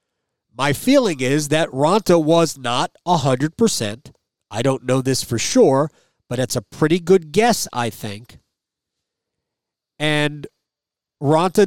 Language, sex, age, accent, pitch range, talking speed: English, male, 40-59, American, 135-195 Hz, 125 wpm